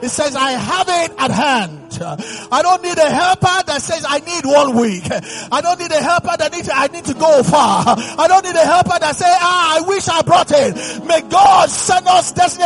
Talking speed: 230 wpm